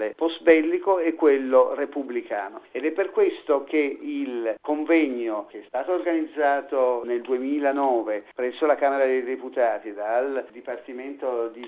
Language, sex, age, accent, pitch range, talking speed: Italian, male, 50-69, native, 125-180 Hz, 135 wpm